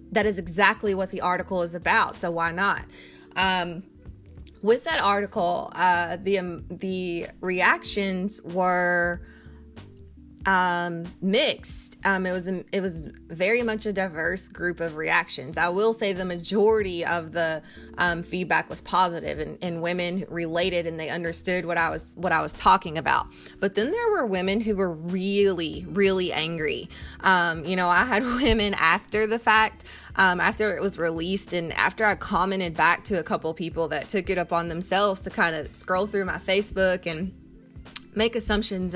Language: English